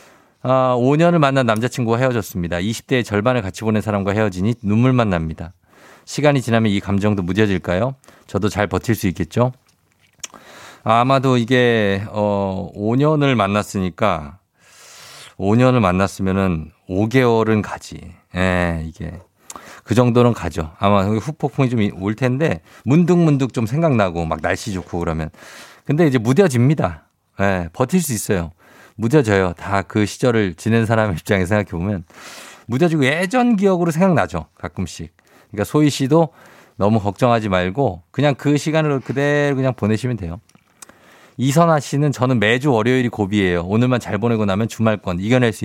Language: Korean